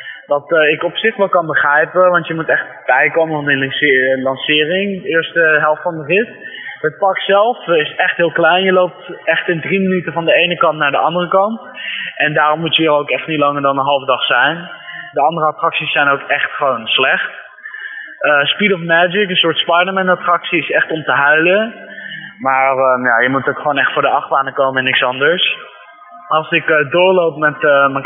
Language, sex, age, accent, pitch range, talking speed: Dutch, male, 20-39, Dutch, 150-180 Hz, 210 wpm